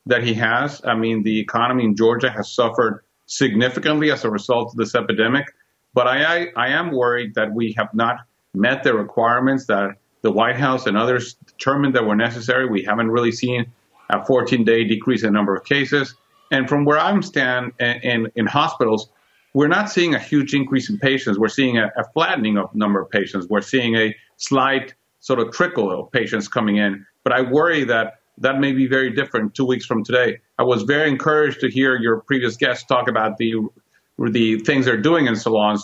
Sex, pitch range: male, 115-140 Hz